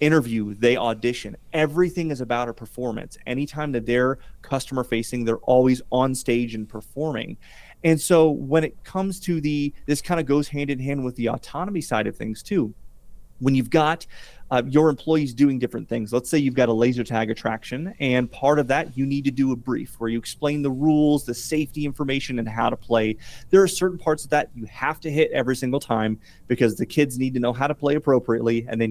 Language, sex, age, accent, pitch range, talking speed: English, male, 30-49, American, 120-155 Hz, 215 wpm